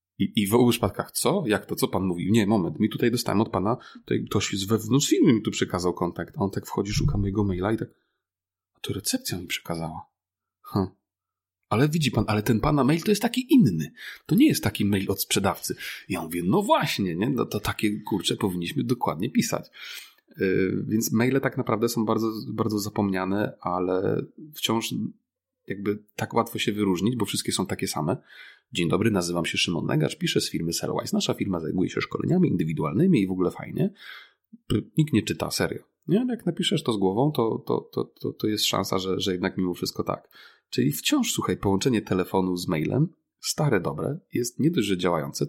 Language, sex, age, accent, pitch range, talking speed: Polish, male, 30-49, native, 95-135 Hz, 195 wpm